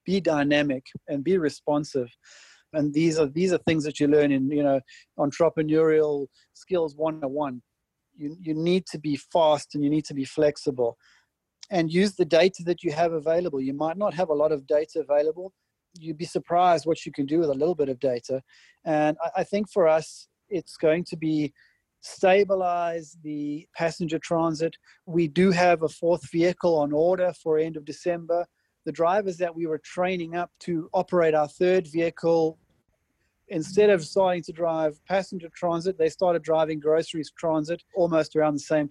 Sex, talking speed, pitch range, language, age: male, 180 wpm, 150-175 Hz, English, 30-49